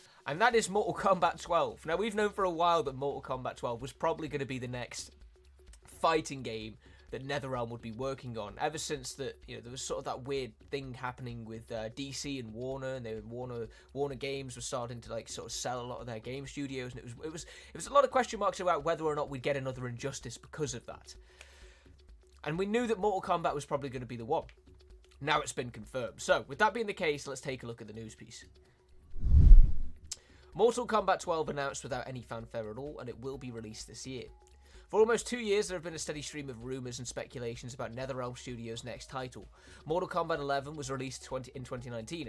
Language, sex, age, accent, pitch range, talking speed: Italian, male, 20-39, British, 115-150 Hz, 230 wpm